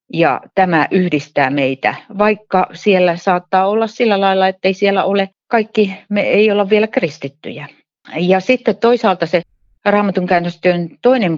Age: 40-59